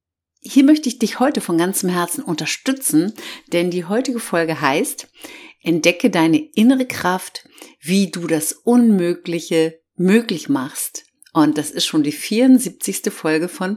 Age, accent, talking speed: 50-69, German, 140 wpm